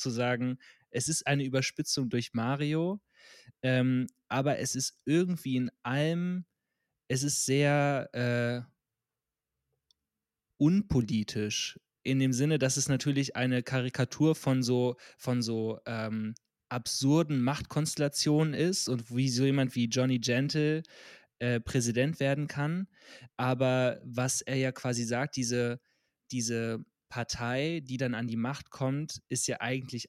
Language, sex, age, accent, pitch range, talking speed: German, male, 20-39, German, 120-140 Hz, 130 wpm